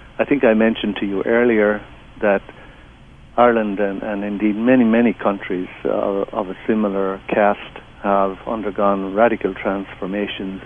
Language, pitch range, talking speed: English, 100-115 Hz, 135 wpm